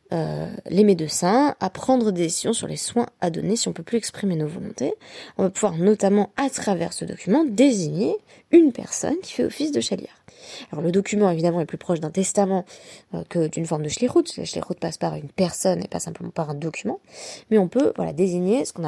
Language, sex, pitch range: French, female, 165-240 Hz